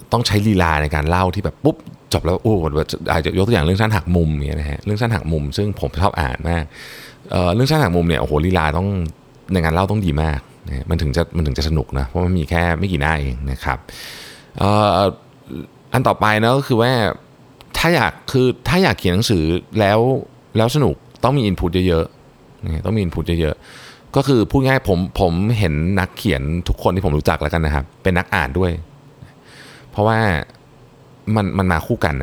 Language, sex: Thai, male